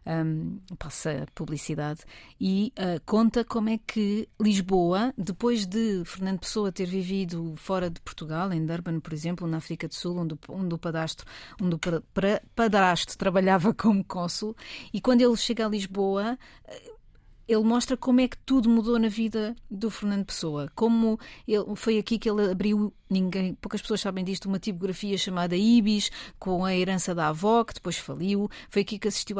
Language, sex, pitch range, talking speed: Portuguese, female, 185-230 Hz, 155 wpm